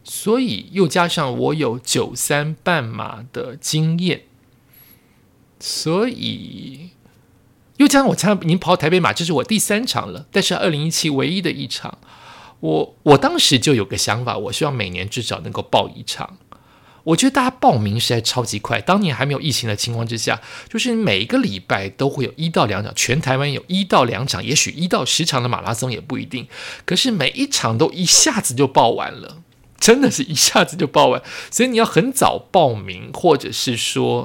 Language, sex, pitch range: Chinese, male, 120-180 Hz